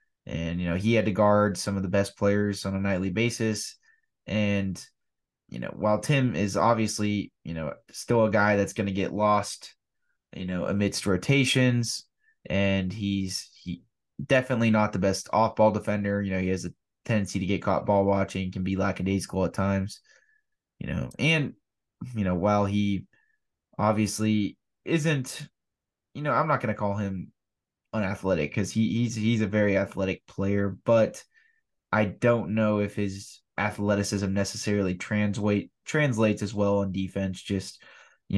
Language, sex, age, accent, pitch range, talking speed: English, male, 20-39, American, 95-115 Hz, 160 wpm